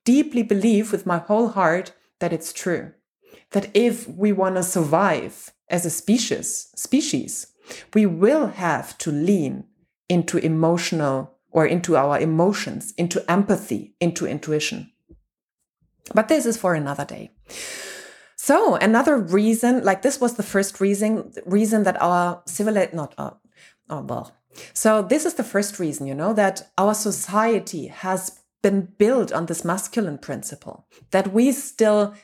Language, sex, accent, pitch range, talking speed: English, female, German, 175-225 Hz, 145 wpm